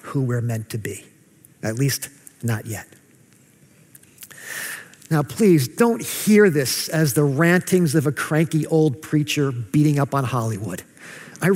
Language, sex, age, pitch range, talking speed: English, male, 50-69, 140-195 Hz, 140 wpm